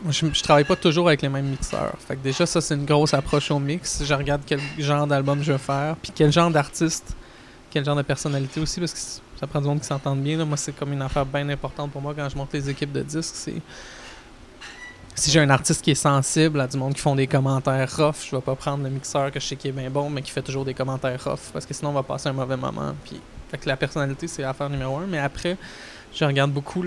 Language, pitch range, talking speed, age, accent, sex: French, 135-155 Hz, 270 wpm, 20-39, Canadian, male